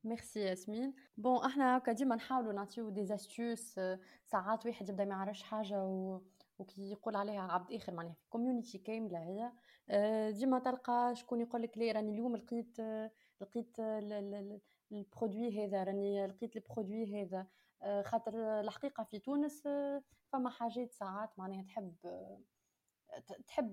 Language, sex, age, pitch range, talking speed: Arabic, female, 20-39, 200-235 Hz, 125 wpm